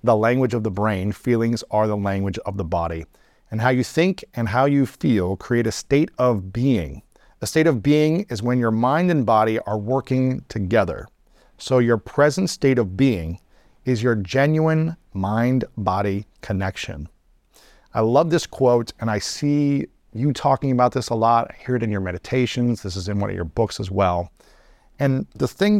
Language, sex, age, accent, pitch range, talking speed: English, male, 40-59, American, 100-130 Hz, 190 wpm